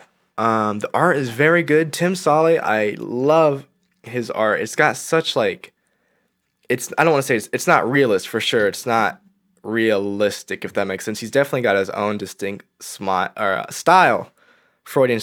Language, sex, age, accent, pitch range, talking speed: English, male, 10-29, American, 105-150 Hz, 180 wpm